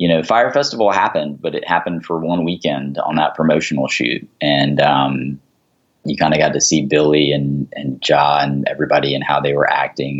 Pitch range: 70-80 Hz